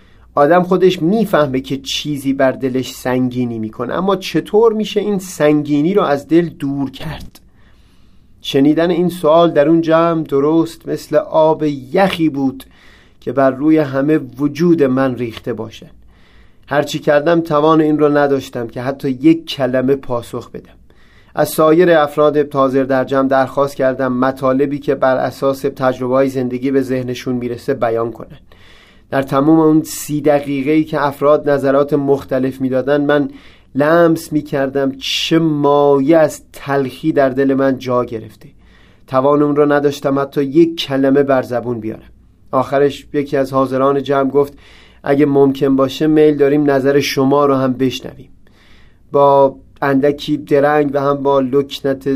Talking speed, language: 145 wpm, Persian